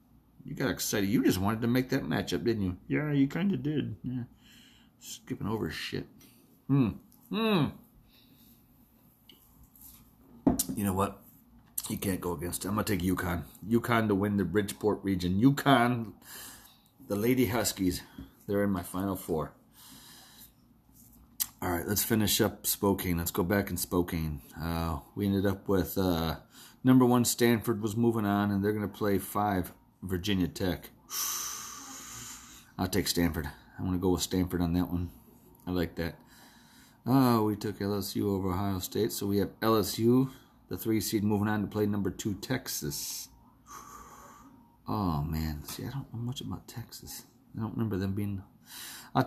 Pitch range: 90-120 Hz